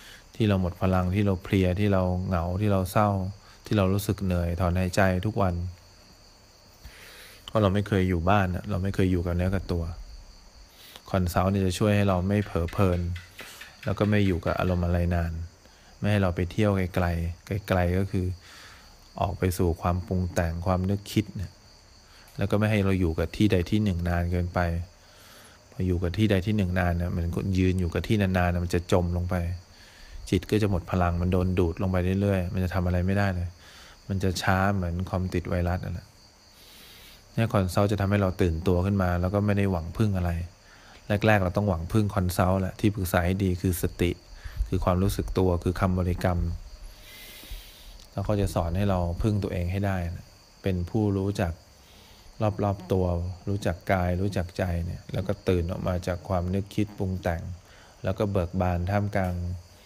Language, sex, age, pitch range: English, male, 20-39, 90-100 Hz